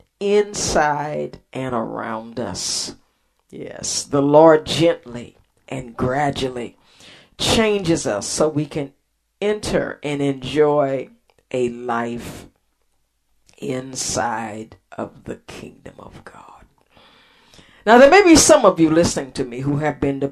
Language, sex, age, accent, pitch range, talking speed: English, female, 50-69, American, 125-165 Hz, 120 wpm